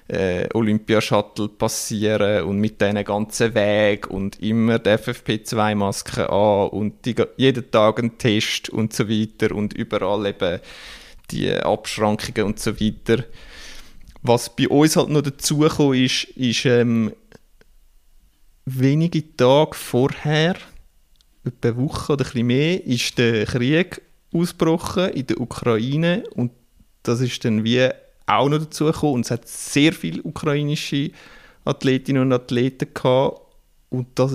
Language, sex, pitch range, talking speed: German, male, 110-135 Hz, 135 wpm